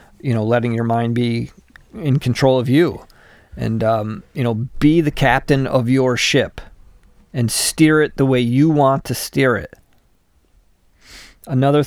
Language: English